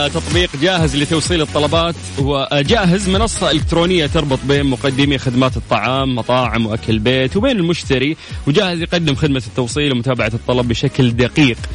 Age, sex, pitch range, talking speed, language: 20-39, male, 115-155 Hz, 135 wpm, English